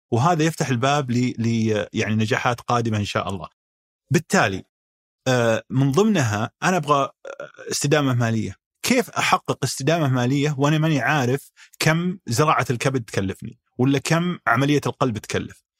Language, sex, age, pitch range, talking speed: Arabic, male, 30-49, 115-160 Hz, 125 wpm